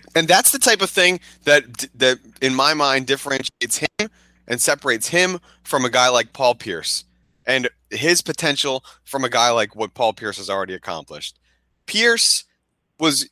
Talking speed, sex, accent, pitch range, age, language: 165 wpm, male, American, 105-135 Hz, 30-49, English